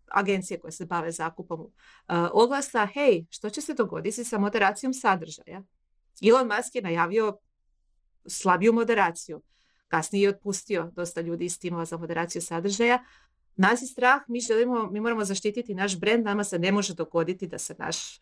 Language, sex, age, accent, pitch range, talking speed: Croatian, female, 30-49, native, 170-225 Hz, 160 wpm